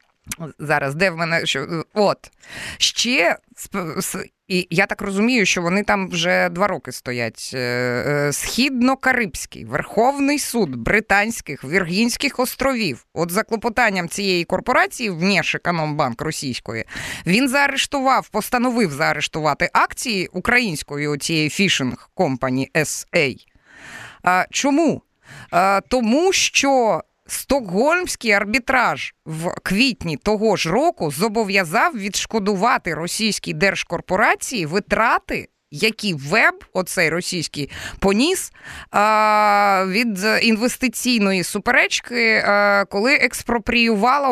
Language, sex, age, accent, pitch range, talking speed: Ukrainian, female, 20-39, native, 175-240 Hz, 90 wpm